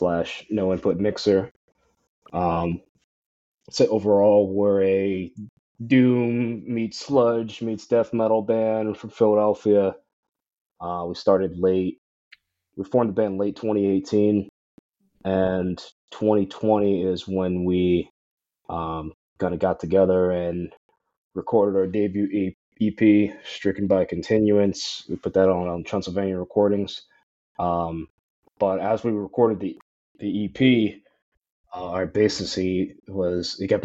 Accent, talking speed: American, 120 wpm